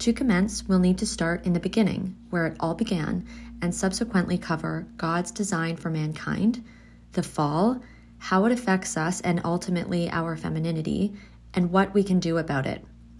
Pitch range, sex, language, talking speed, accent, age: 165-210 Hz, female, English, 170 wpm, American, 30-49